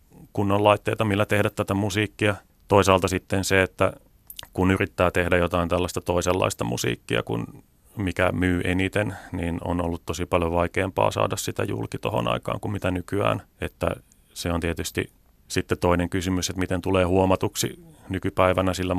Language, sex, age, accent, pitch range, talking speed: Finnish, male, 30-49, native, 90-105 Hz, 145 wpm